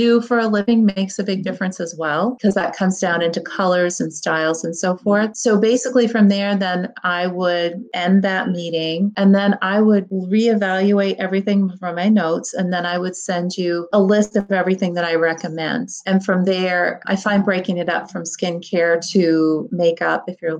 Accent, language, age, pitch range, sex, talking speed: American, English, 30-49, 175-200 Hz, female, 190 wpm